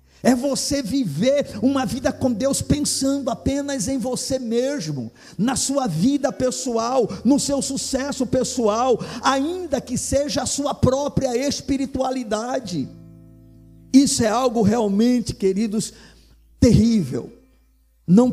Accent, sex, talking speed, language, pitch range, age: Brazilian, male, 110 wpm, Portuguese, 210-265 Hz, 50-69